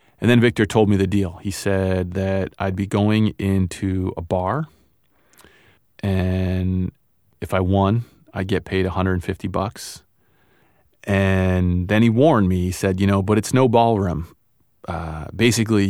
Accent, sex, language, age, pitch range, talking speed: American, male, English, 30-49, 95-110 Hz, 150 wpm